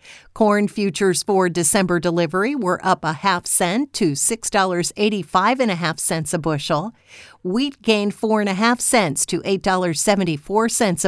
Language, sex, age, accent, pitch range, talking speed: English, female, 50-69, American, 175-215 Hz, 140 wpm